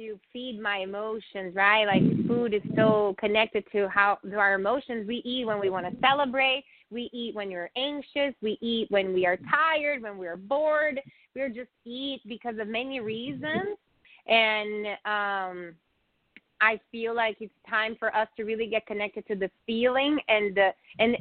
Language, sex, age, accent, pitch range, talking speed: English, female, 20-39, American, 205-240 Hz, 180 wpm